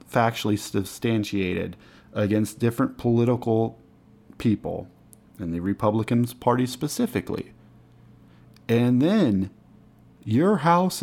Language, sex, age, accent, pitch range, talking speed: English, male, 40-59, American, 105-130 Hz, 80 wpm